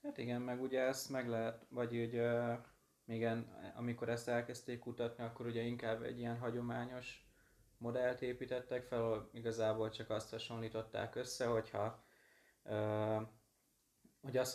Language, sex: Hungarian, male